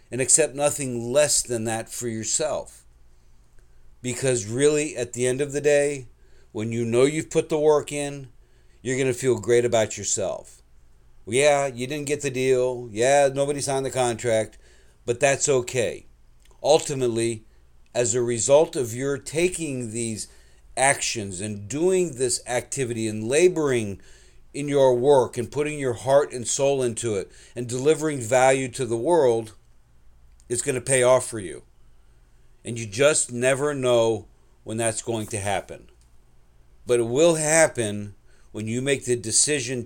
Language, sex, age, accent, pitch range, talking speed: English, male, 50-69, American, 110-140 Hz, 155 wpm